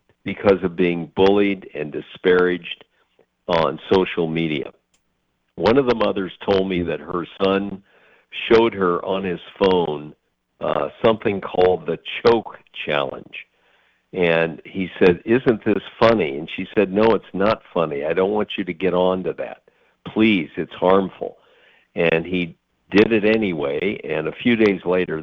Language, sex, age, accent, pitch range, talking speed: English, male, 50-69, American, 85-110 Hz, 150 wpm